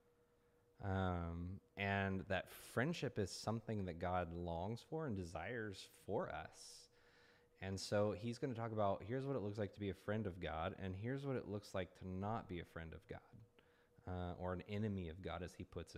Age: 20-39